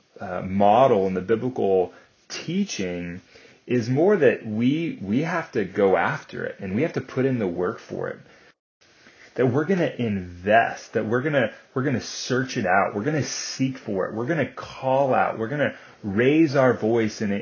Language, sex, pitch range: English, male, 100-125 Hz